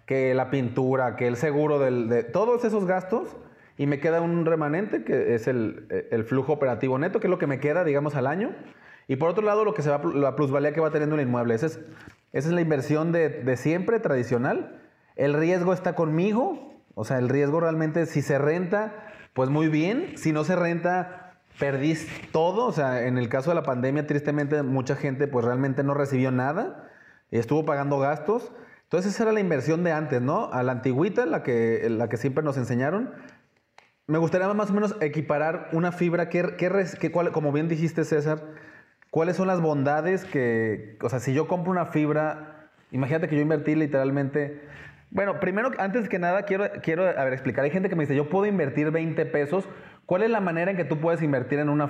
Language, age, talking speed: English, 30-49, 210 wpm